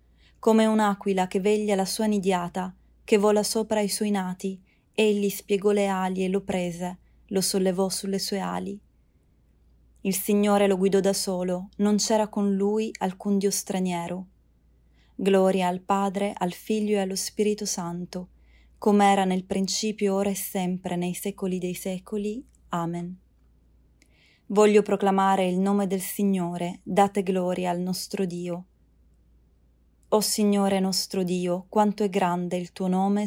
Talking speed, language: 145 wpm, Italian